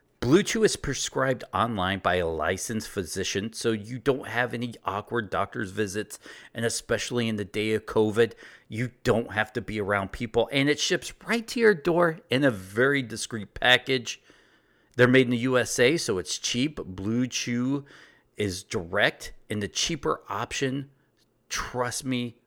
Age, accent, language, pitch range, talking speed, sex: 40-59, American, English, 105-140 Hz, 165 wpm, male